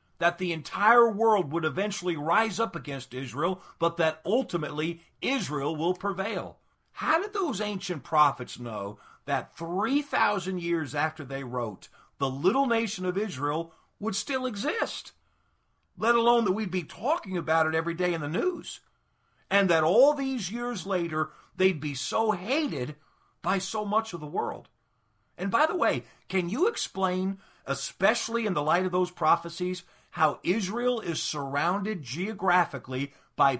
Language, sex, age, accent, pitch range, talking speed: English, male, 50-69, American, 150-215 Hz, 150 wpm